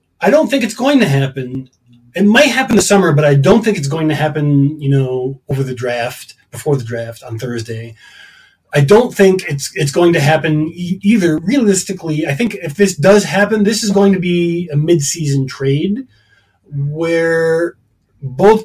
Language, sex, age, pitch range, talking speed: English, male, 30-49, 140-205 Hz, 190 wpm